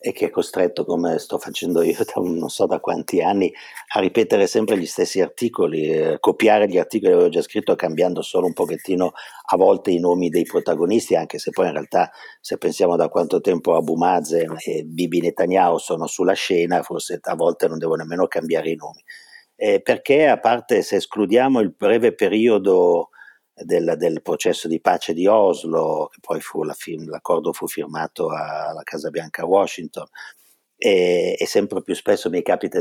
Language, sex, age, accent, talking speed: Italian, male, 50-69, native, 180 wpm